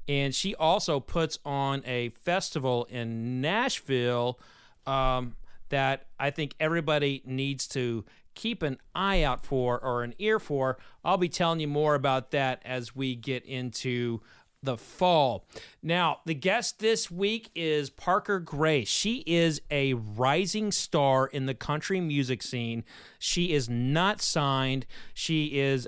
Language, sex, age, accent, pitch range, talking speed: English, male, 40-59, American, 130-170 Hz, 145 wpm